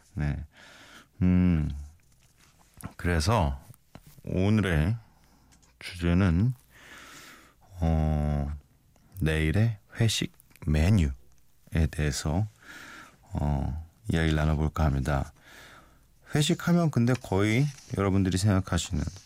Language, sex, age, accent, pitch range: Korean, male, 40-59, native, 75-105 Hz